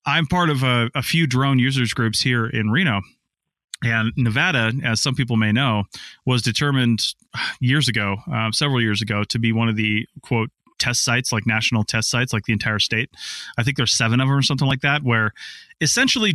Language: English